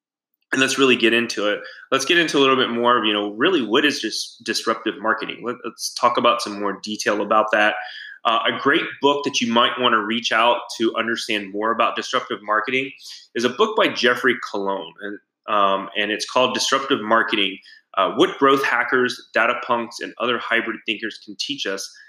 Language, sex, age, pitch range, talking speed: English, male, 20-39, 105-125 Hz, 195 wpm